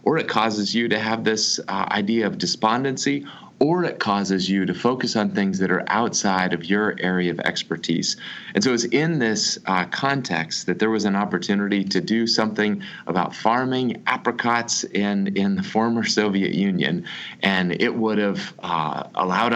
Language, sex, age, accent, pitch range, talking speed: English, male, 30-49, American, 95-115 Hz, 170 wpm